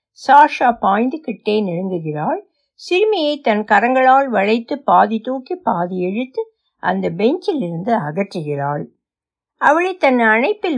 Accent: native